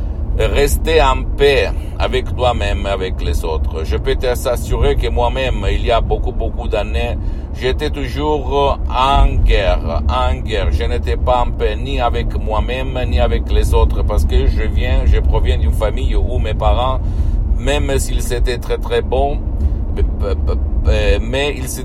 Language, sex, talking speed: Italian, male, 155 wpm